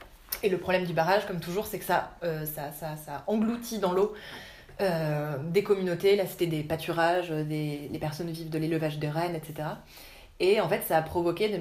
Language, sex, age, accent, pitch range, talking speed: French, female, 20-39, French, 160-190 Hz, 195 wpm